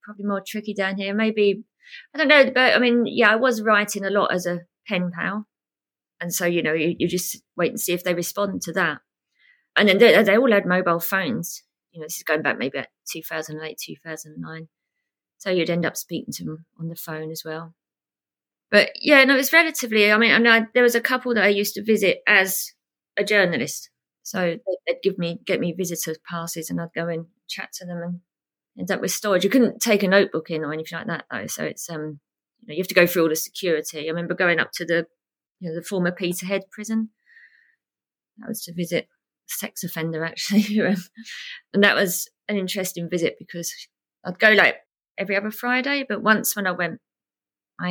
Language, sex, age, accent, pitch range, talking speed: English, female, 30-49, British, 165-215 Hz, 220 wpm